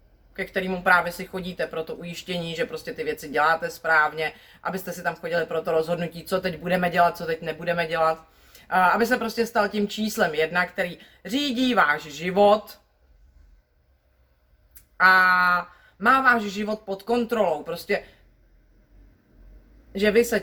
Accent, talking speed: native, 145 wpm